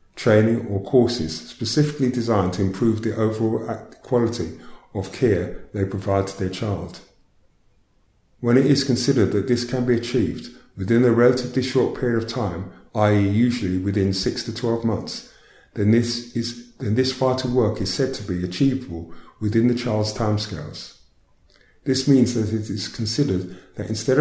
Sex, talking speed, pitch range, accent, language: male, 155 wpm, 95-120 Hz, British, English